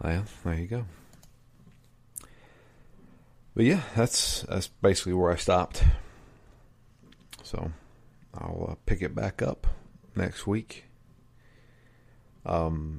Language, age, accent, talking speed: English, 40-59, American, 95 wpm